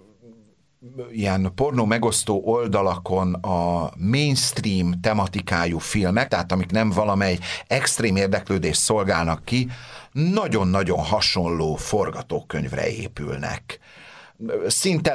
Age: 60-79